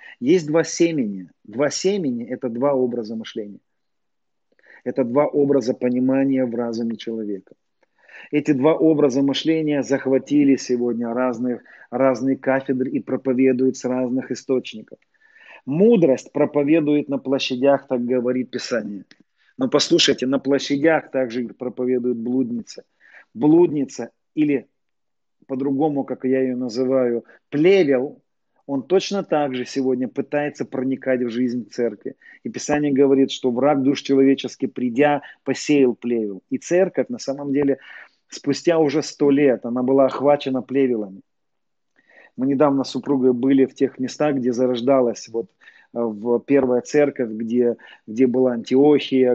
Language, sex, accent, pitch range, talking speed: Russian, male, native, 125-145 Hz, 125 wpm